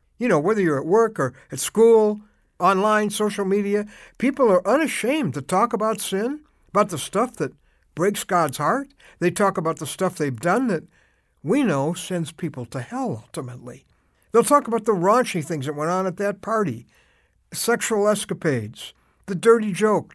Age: 60-79